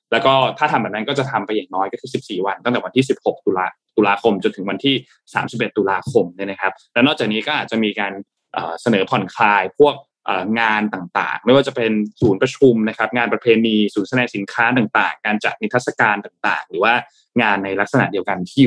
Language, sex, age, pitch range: Thai, male, 20-39, 105-140 Hz